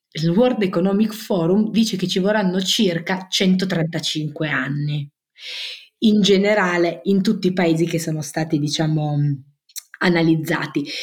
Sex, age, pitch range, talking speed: female, 30-49, 170-215 Hz, 115 wpm